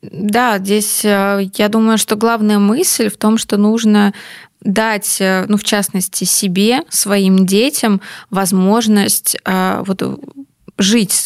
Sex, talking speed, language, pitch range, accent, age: female, 110 wpm, Russian, 190-225 Hz, native, 20-39